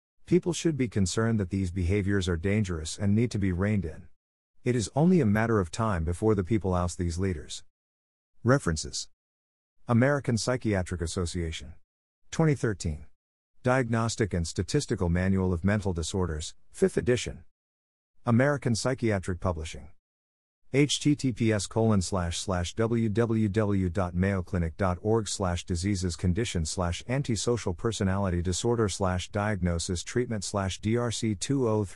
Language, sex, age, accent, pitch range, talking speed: English, male, 50-69, American, 85-115 Hz, 115 wpm